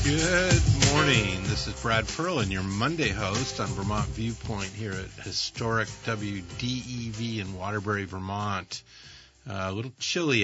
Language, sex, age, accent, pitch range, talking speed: English, male, 50-69, American, 100-120 Hz, 130 wpm